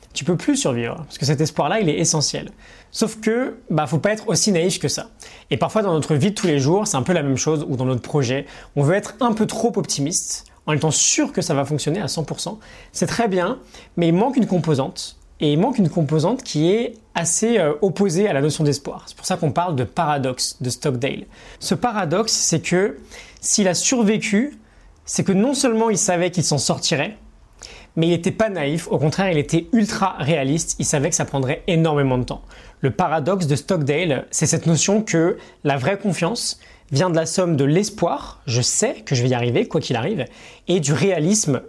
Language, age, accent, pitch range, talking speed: French, 20-39, French, 145-200 Hz, 220 wpm